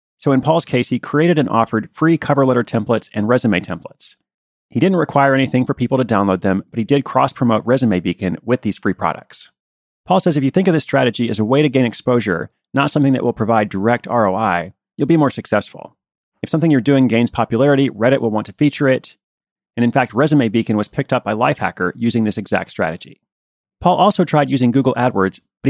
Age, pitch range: 30-49, 110-135 Hz